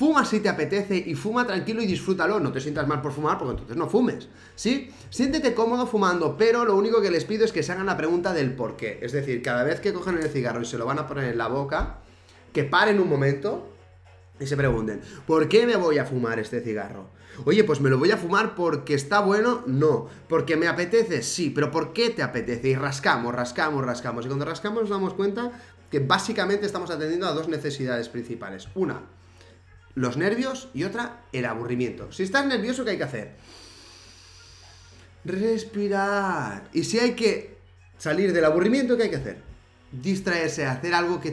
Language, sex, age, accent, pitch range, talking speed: Spanish, male, 30-49, Spanish, 125-200 Hz, 200 wpm